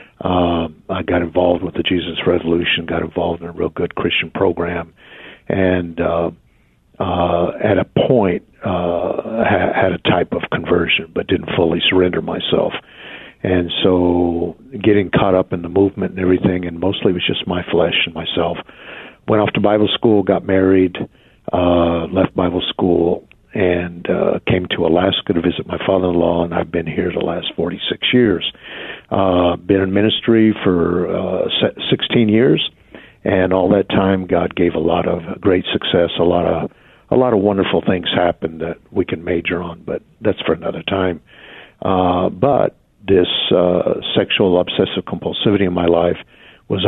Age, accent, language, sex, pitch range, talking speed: 50-69, American, English, male, 85-95 Hz, 165 wpm